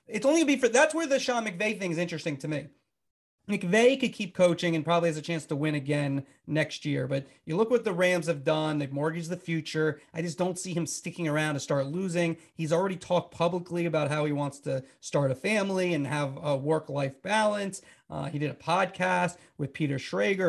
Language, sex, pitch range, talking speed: English, male, 155-190 Hz, 225 wpm